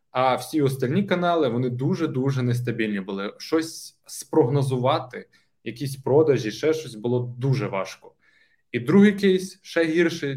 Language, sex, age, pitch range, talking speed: Ukrainian, male, 20-39, 120-145 Hz, 125 wpm